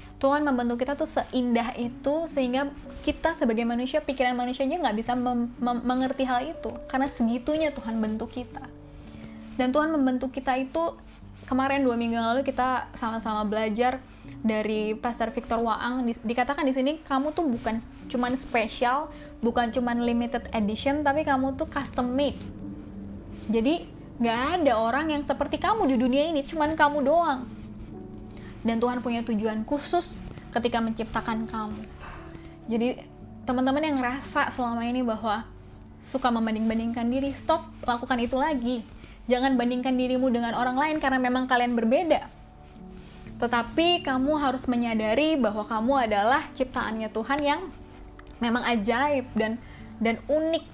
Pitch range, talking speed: 230-280 Hz, 140 wpm